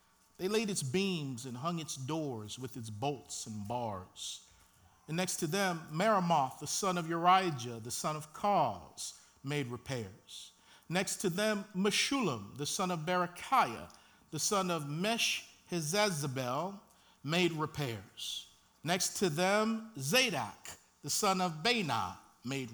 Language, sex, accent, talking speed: English, male, American, 135 wpm